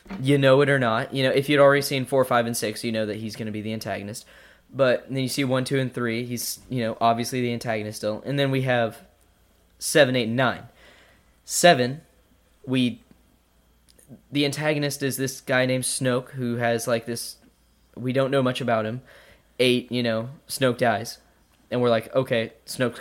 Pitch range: 110-130 Hz